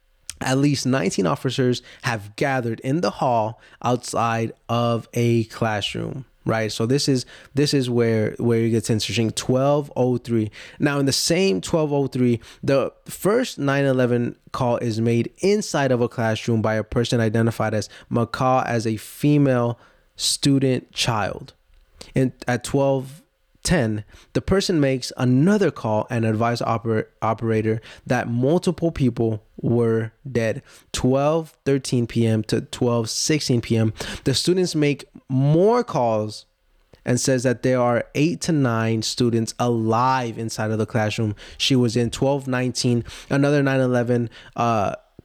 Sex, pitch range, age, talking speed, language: male, 115-135 Hz, 20-39, 140 wpm, English